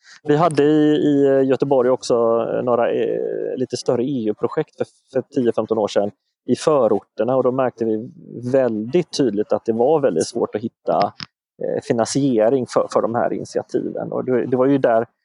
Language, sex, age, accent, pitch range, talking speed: English, male, 30-49, Swedish, 115-150 Hz, 145 wpm